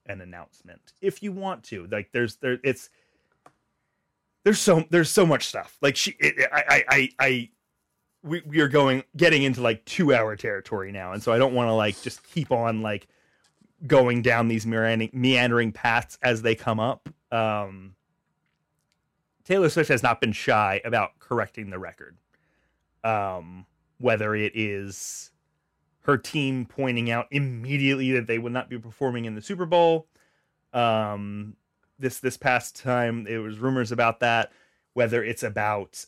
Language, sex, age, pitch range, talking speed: English, male, 30-49, 110-135 Hz, 160 wpm